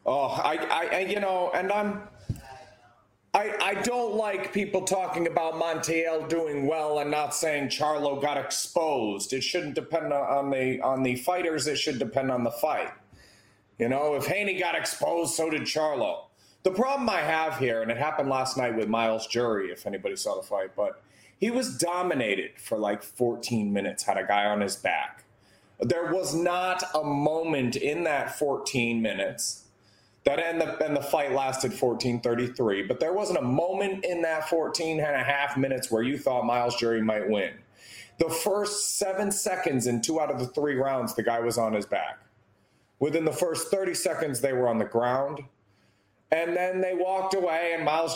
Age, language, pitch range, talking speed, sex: 30-49, English, 120-170 Hz, 185 wpm, male